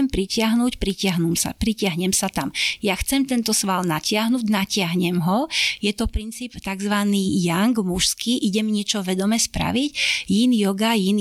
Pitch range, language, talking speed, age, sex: 195-230 Hz, Slovak, 145 wpm, 30-49, female